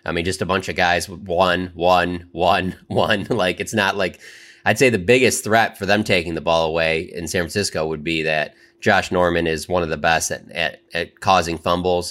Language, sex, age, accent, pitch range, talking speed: English, male, 20-39, American, 85-100 Hz, 225 wpm